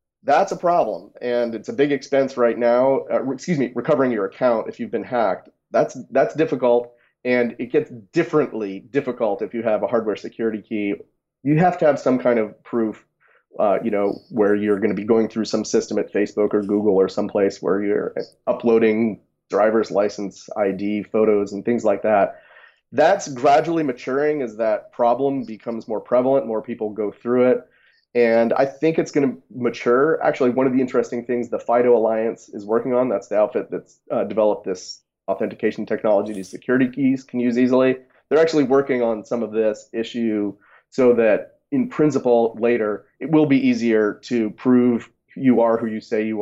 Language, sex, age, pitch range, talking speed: English, male, 30-49, 110-135 Hz, 185 wpm